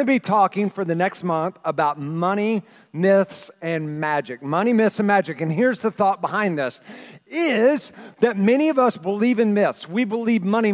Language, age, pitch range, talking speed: English, 40-59, 180-230 Hz, 180 wpm